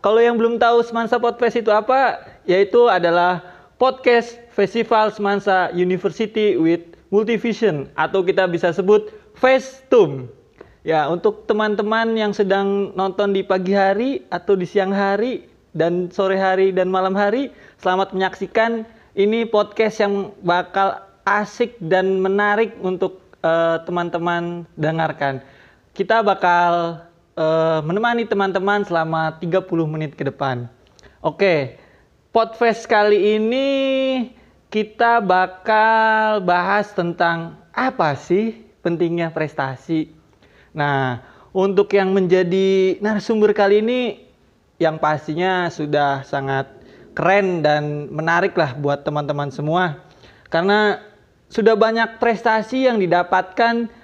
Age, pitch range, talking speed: 30-49, 170-220 Hz, 110 wpm